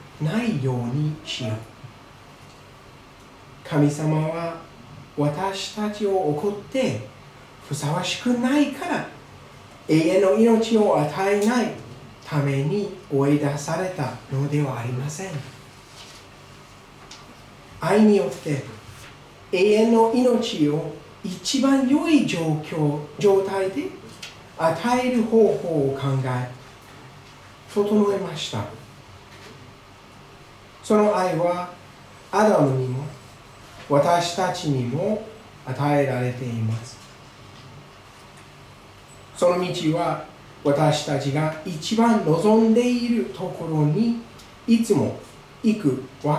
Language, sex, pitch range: Japanese, male, 135-200 Hz